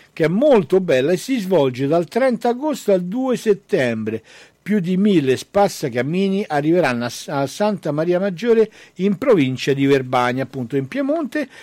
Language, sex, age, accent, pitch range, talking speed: Italian, male, 60-79, native, 160-235 Hz, 150 wpm